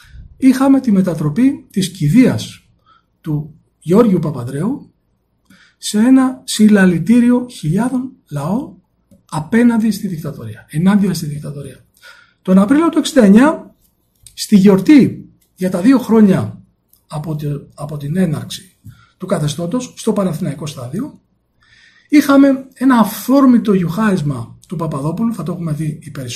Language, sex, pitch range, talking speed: Greek, male, 155-220 Hz, 105 wpm